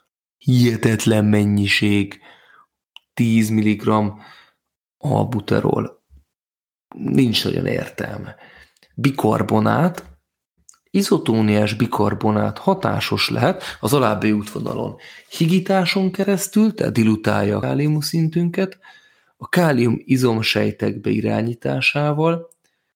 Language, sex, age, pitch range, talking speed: Hungarian, male, 30-49, 105-145 Hz, 70 wpm